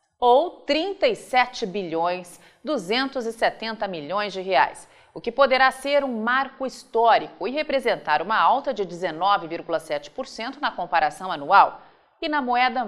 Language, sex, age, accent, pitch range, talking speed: Portuguese, female, 40-59, Brazilian, 180-255 Hz, 120 wpm